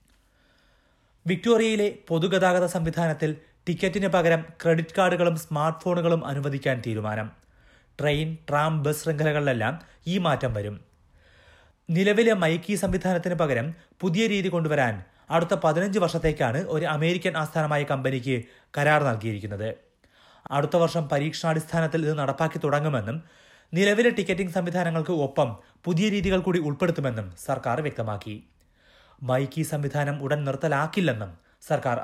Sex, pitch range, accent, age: male, 130-175 Hz, native, 30-49